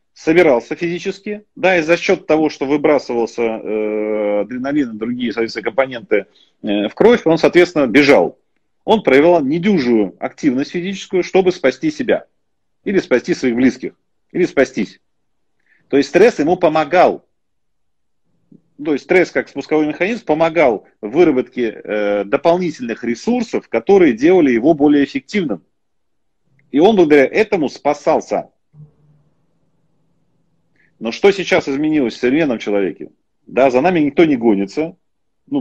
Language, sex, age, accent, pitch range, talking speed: Russian, male, 40-59, native, 115-180 Hz, 130 wpm